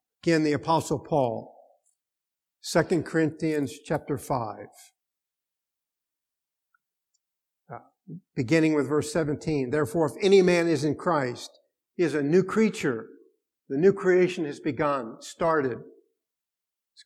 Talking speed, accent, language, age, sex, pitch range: 110 wpm, American, English, 50-69, male, 150-195 Hz